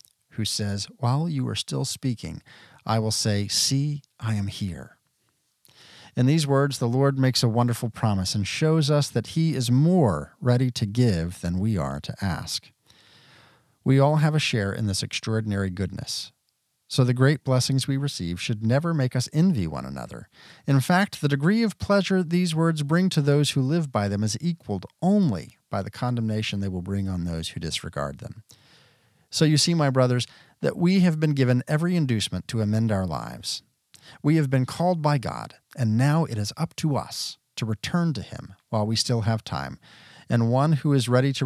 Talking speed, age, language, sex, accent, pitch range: 190 wpm, 40-59, English, male, American, 110-145 Hz